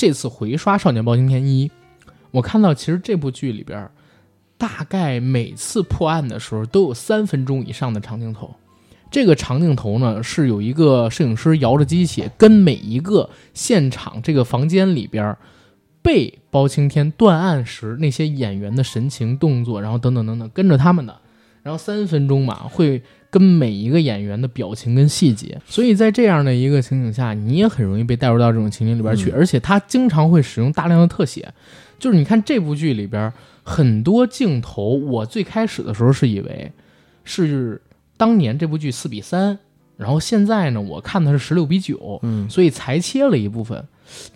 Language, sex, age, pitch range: Chinese, male, 20-39, 115-170 Hz